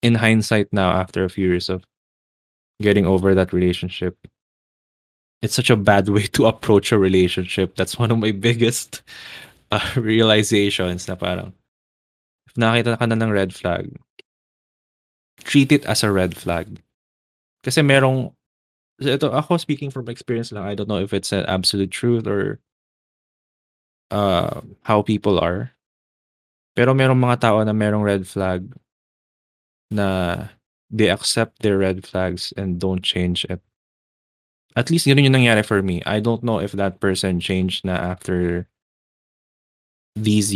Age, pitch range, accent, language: 20-39, 95-115 Hz, native, Filipino